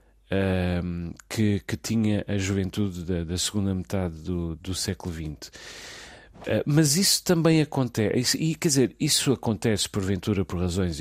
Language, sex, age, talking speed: Portuguese, male, 40-59, 135 wpm